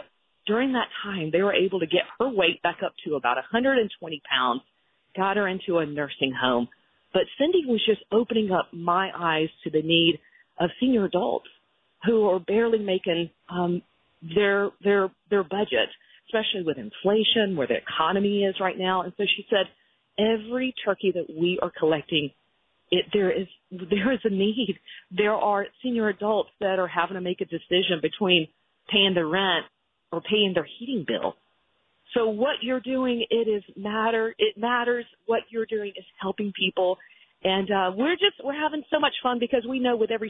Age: 40-59